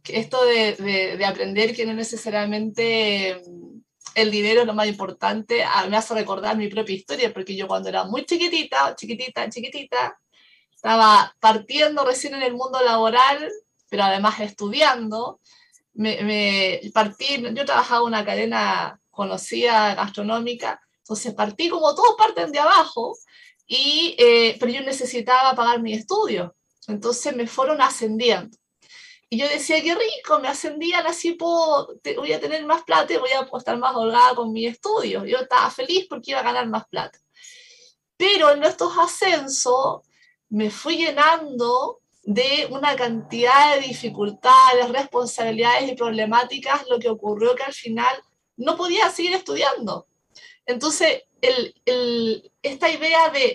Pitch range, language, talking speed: 220-320 Hz, Spanish, 150 wpm